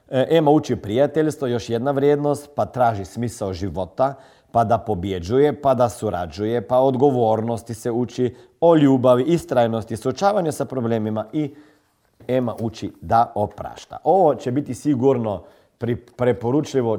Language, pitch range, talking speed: Croatian, 105-145 Hz, 125 wpm